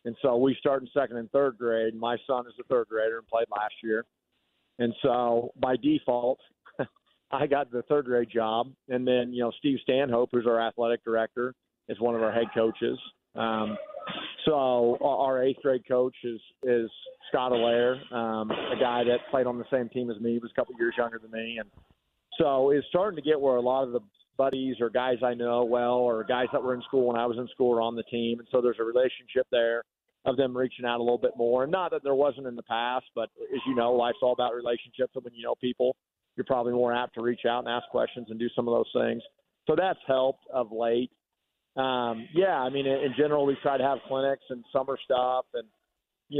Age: 40-59